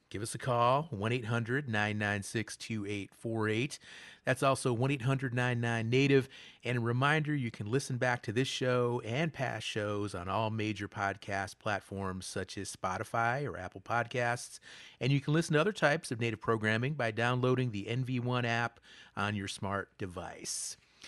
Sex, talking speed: male, 140 wpm